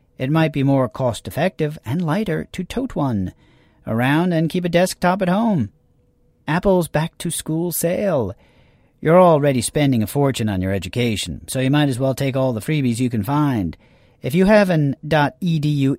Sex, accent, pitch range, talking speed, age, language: male, American, 120-165 Hz, 170 wpm, 40-59, English